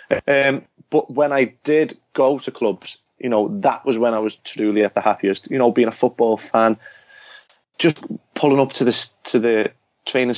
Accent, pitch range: British, 115-140 Hz